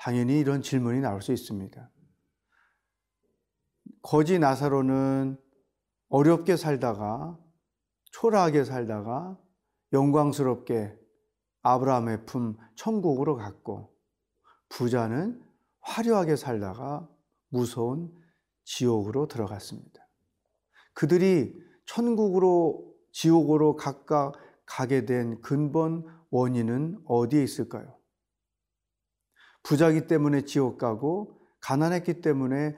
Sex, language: male, Korean